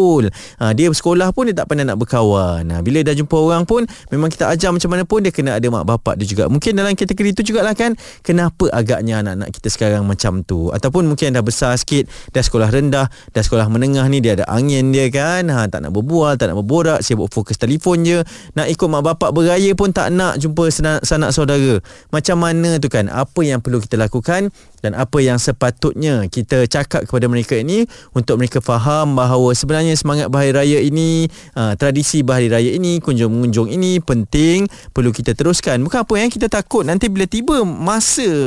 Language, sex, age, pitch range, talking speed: Malay, male, 20-39, 120-165 Hz, 200 wpm